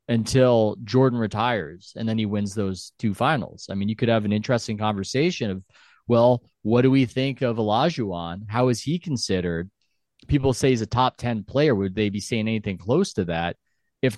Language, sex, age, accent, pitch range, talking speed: English, male, 30-49, American, 100-125 Hz, 195 wpm